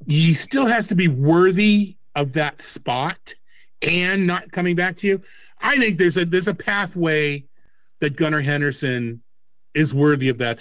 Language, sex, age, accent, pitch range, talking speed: English, male, 40-59, American, 120-170 Hz, 165 wpm